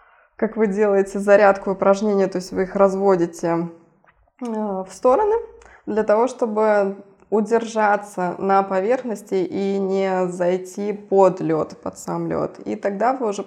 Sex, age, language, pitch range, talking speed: female, 20-39, Russian, 185-220 Hz, 135 wpm